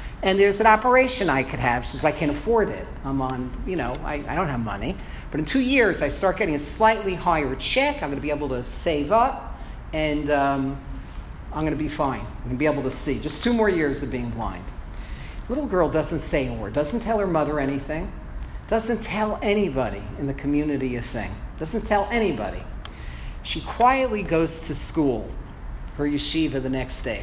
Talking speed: 205 wpm